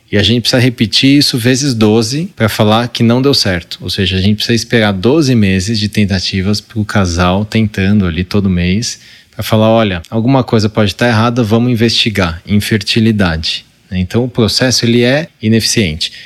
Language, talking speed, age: Portuguese, 175 wpm, 20-39